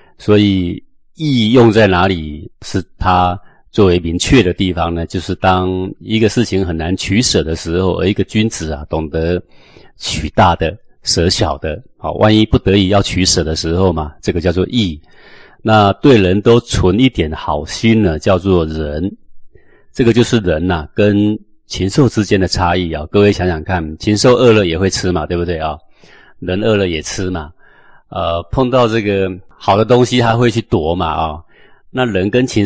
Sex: male